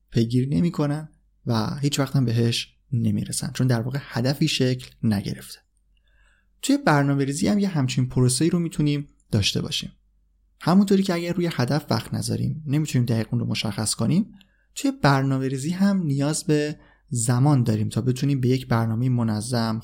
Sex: male